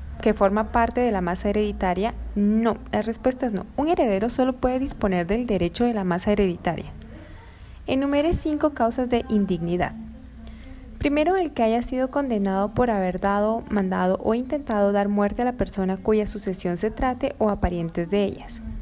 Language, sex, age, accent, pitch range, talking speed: Spanish, female, 10-29, Colombian, 200-260 Hz, 170 wpm